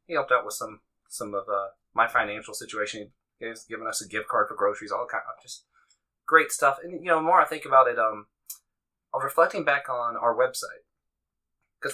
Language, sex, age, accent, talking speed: English, male, 20-39, American, 210 wpm